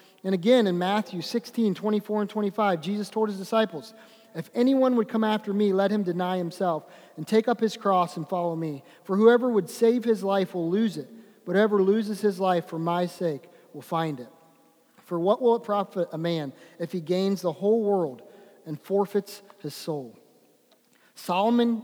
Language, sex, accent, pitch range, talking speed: English, male, American, 175-215 Hz, 185 wpm